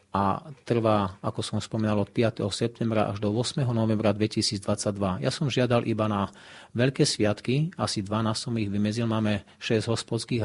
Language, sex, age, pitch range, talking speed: Slovak, male, 40-59, 105-120 Hz, 160 wpm